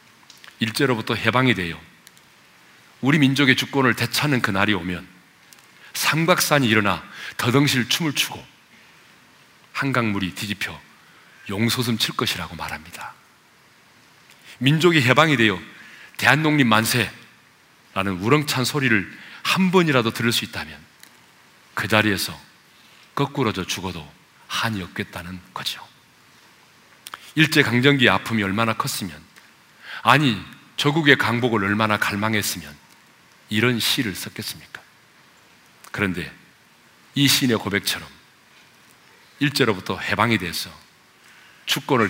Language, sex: Korean, male